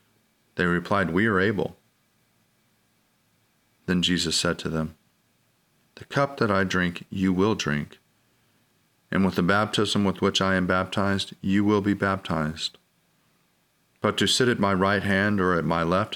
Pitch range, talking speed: 85-105 Hz, 155 wpm